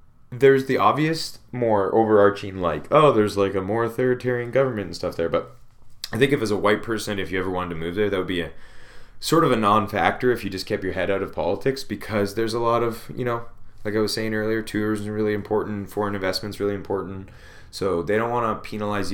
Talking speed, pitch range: 230 wpm, 95-110 Hz